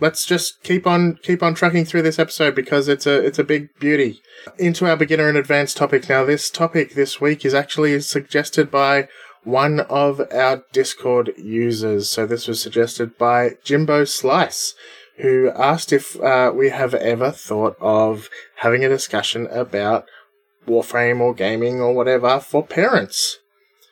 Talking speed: 160 wpm